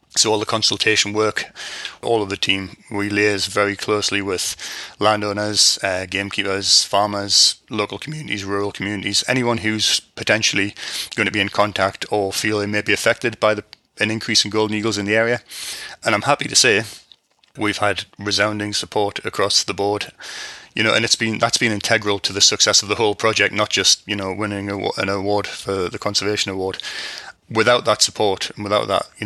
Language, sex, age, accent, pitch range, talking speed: English, male, 30-49, British, 100-110 Hz, 190 wpm